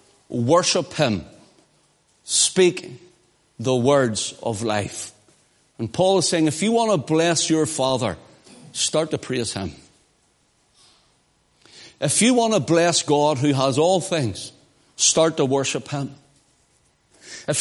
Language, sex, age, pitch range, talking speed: English, male, 60-79, 130-170 Hz, 125 wpm